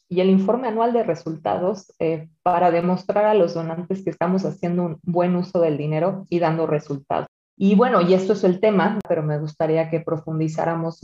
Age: 30-49